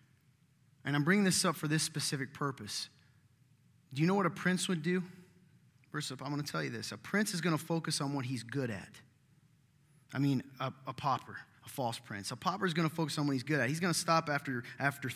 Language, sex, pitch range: English, male, 135-175 Hz